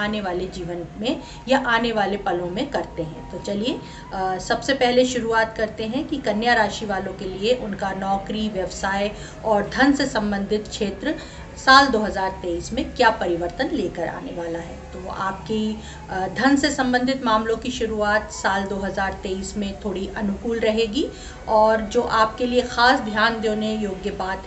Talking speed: 155 wpm